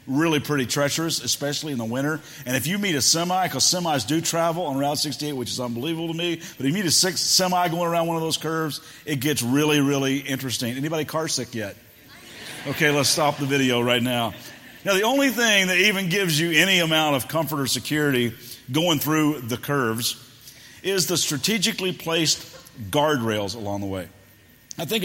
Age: 50-69